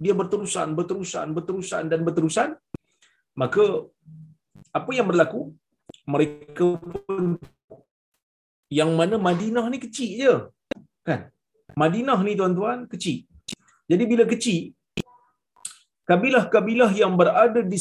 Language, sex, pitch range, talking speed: Malayalam, male, 170-240 Hz, 100 wpm